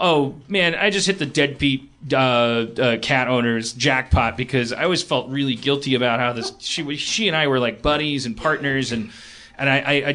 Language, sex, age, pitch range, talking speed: English, male, 30-49, 120-145 Hz, 200 wpm